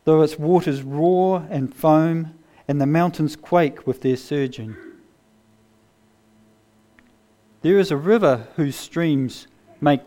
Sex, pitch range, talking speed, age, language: male, 110-160 Hz, 120 wpm, 40-59, English